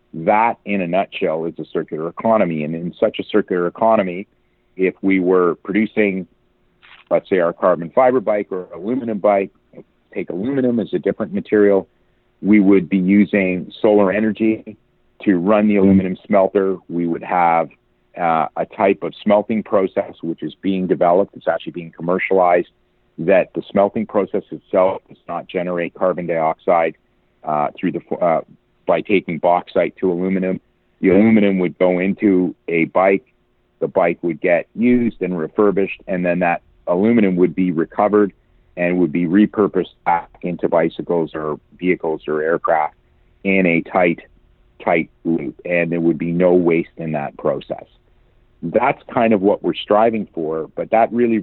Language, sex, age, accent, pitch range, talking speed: English, male, 50-69, American, 85-100 Hz, 160 wpm